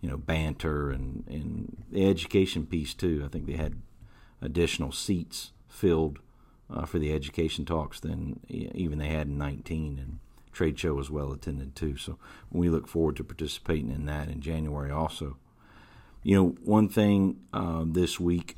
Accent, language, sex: American, English, male